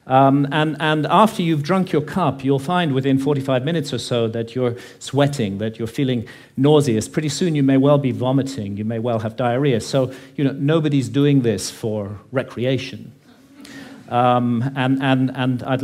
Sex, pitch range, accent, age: male, 115-145 Hz, British, 50-69